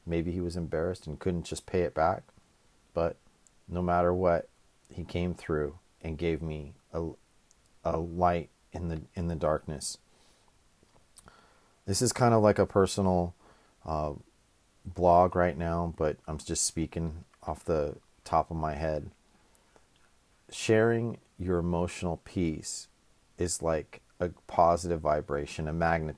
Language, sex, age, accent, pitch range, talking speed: English, male, 40-59, American, 80-95 Hz, 135 wpm